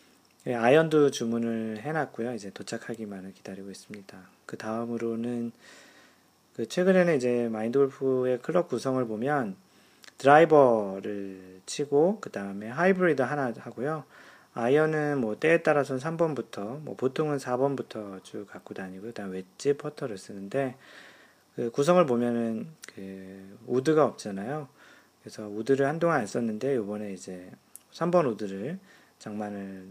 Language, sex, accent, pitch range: Korean, male, native, 105-145 Hz